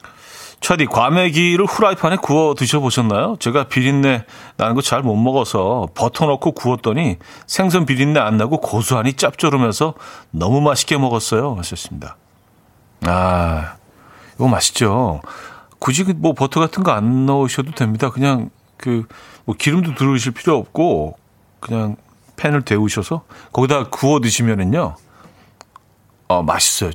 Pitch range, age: 110-150 Hz, 40-59